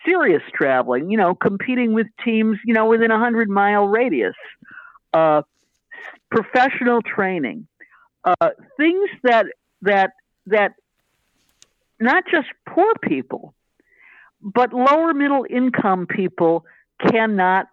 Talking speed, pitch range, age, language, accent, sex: 105 wpm, 160-250 Hz, 60-79, English, American, female